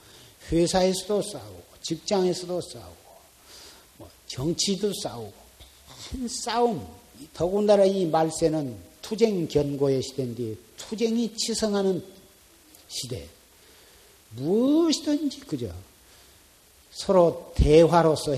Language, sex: Korean, male